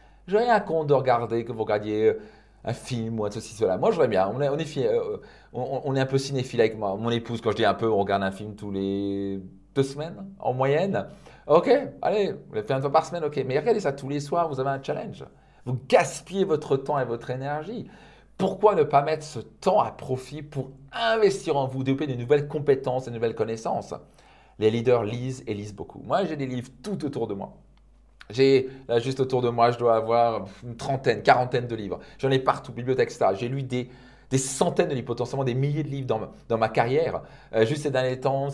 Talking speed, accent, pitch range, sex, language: 230 wpm, French, 115-145 Hz, male, French